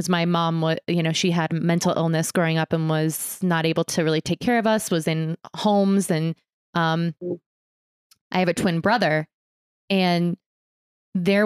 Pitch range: 160-185 Hz